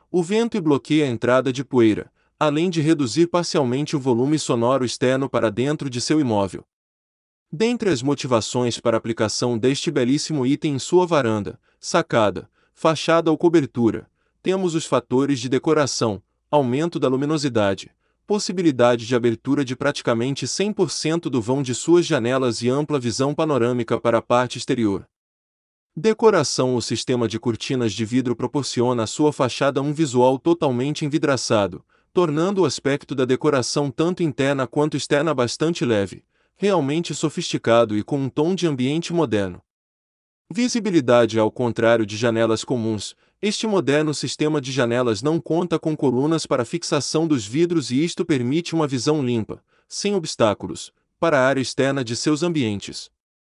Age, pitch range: 20-39, 120-160 Hz